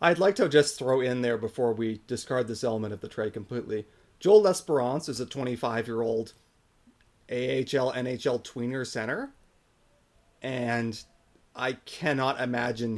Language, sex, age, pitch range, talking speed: English, male, 30-49, 120-160 Hz, 130 wpm